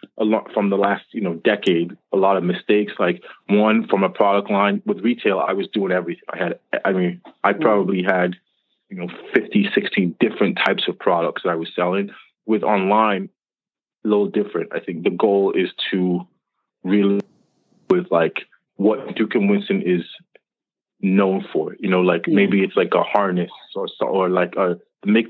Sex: male